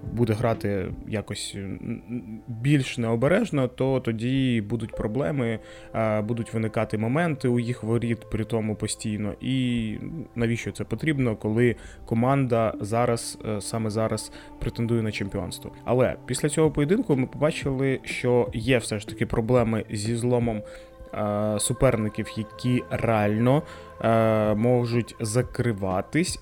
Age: 20-39